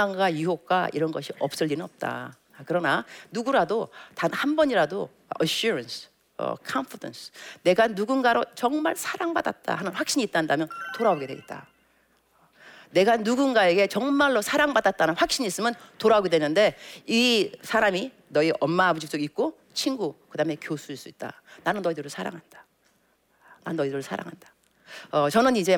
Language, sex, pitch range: Korean, female, 160-230 Hz